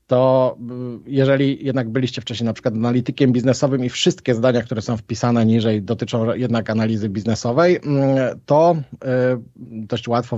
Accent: native